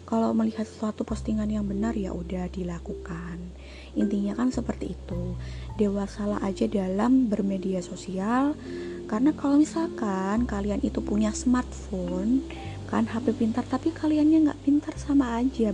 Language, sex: Indonesian, female